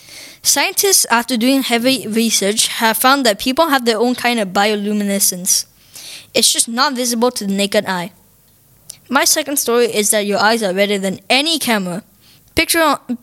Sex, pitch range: female, 200-245 Hz